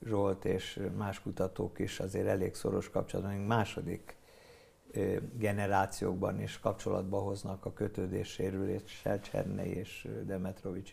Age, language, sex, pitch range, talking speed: 50-69, Hungarian, male, 95-120 Hz, 100 wpm